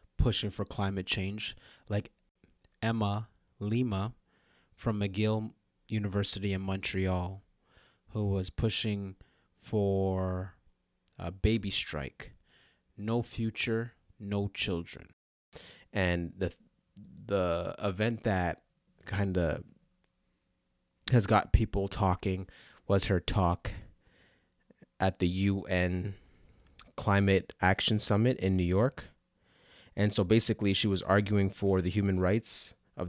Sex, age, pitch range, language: male, 30-49, 90-105 Hz, English